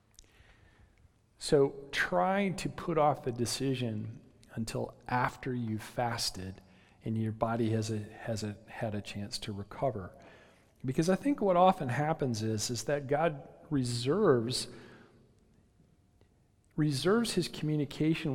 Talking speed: 110 wpm